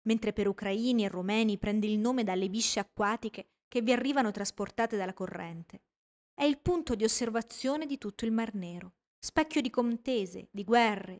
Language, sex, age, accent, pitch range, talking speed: Italian, female, 20-39, native, 205-280 Hz, 170 wpm